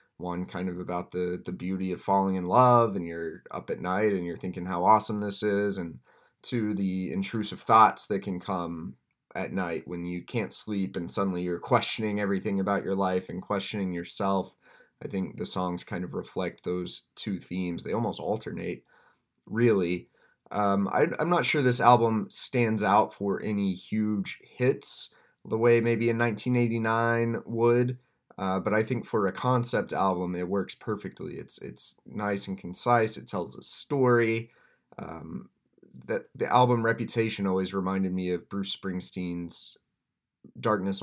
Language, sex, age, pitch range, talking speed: English, male, 20-39, 90-115 Hz, 165 wpm